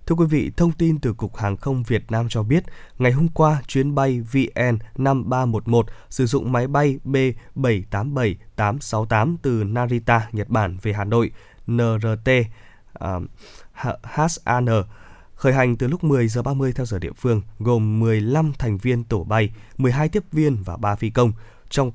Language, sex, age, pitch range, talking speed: Vietnamese, male, 20-39, 110-135 Hz, 165 wpm